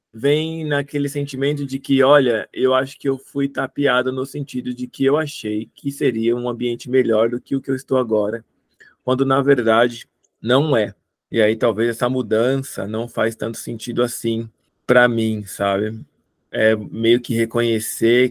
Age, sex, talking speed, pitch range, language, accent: 20-39, male, 170 wpm, 115-140 Hz, Portuguese, Brazilian